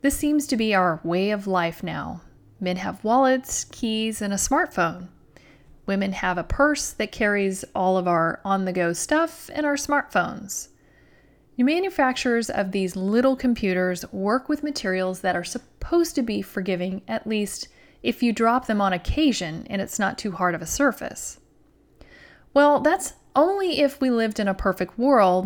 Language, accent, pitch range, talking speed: English, American, 185-265 Hz, 165 wpm